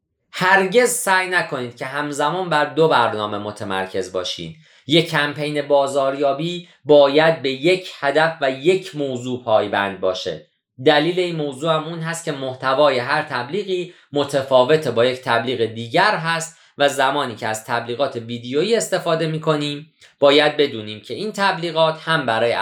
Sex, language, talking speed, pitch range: male, Persian, 140 wpm, 125-160 Hz